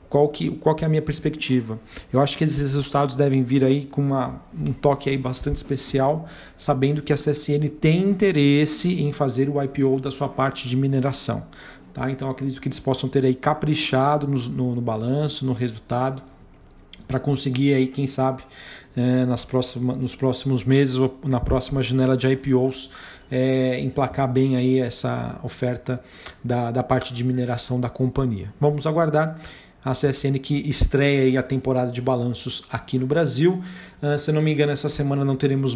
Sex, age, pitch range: male, 40-59, 125-145 Hz